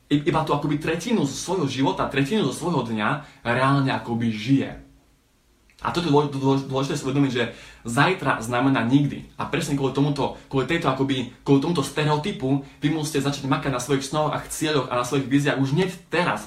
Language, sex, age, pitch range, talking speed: Slovak, male, 20-39, 125-150 Hz, 170 wpm